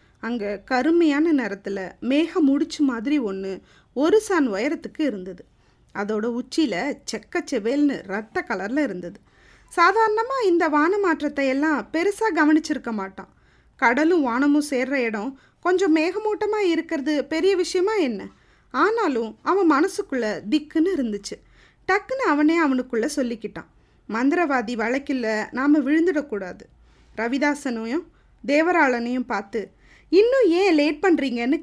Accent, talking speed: native, 100 wpm